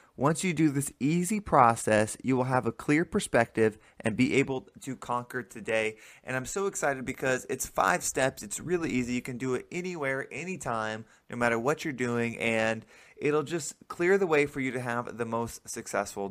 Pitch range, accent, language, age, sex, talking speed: 110-135 Hz, American, English, 20-39, male, 195 wpm